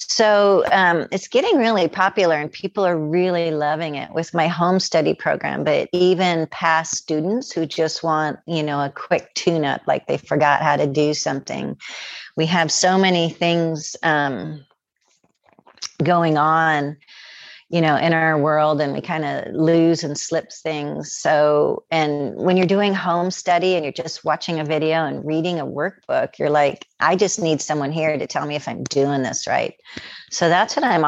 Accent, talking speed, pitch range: American, 180 wpm, 145-170 Hz